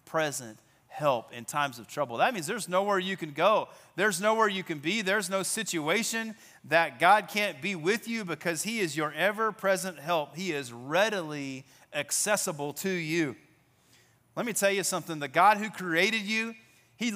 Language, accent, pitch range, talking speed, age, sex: English, American, 170-220 Hz, 175 wpm, 30-49, male